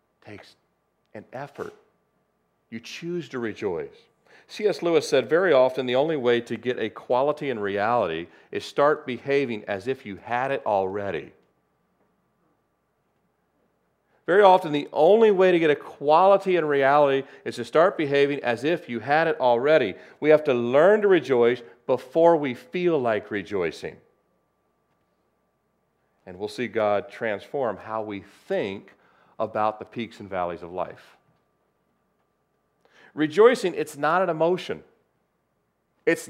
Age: 40-59